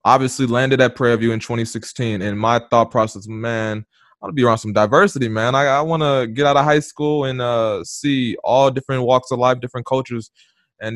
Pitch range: 115-140 Hz